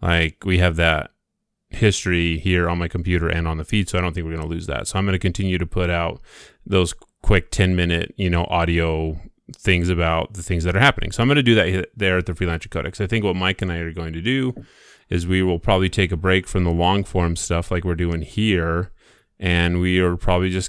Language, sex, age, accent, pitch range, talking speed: English, male, 30-49, American, 85-100 Hz, 245 wpm